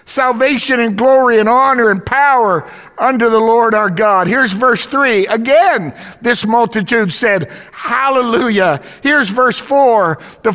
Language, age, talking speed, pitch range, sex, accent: English, 50-69, 135 wpm, 155-250 Hz, male, American